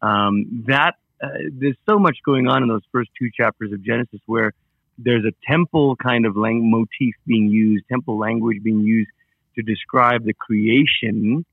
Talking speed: 170 wpm